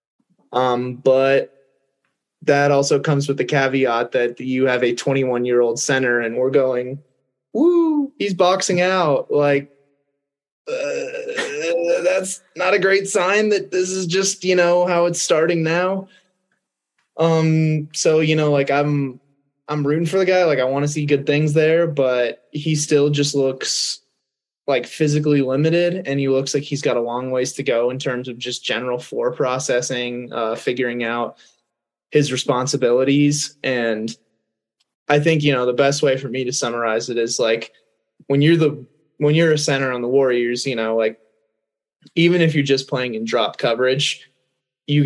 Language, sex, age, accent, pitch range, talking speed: English, male, 20-39, American, 125-160 Hz, 170 wpm